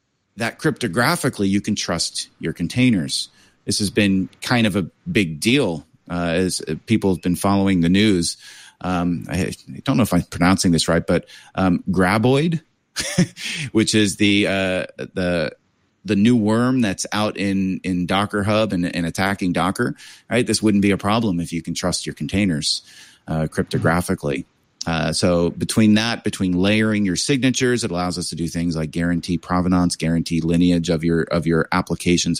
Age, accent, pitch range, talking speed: 30-49, American, 85-100 Hz, 170 wpm